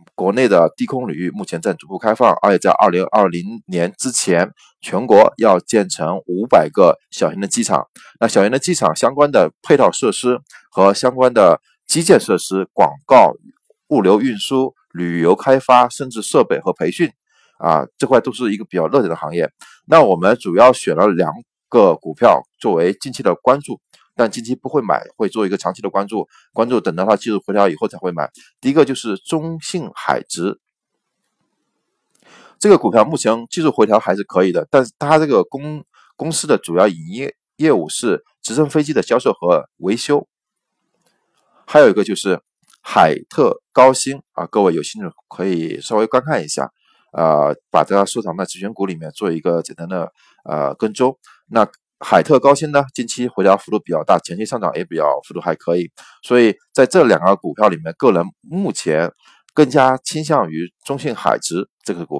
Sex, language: male, Chinese